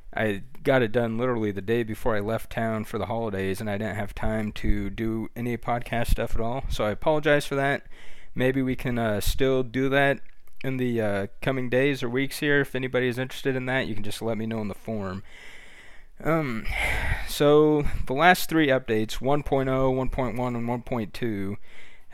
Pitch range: 110-135 Hz